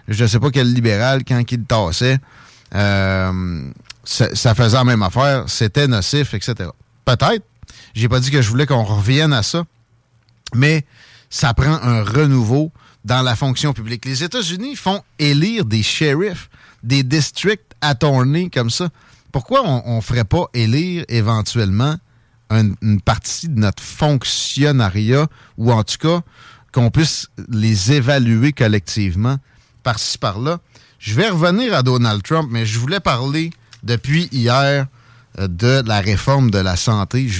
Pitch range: 110-140 Hz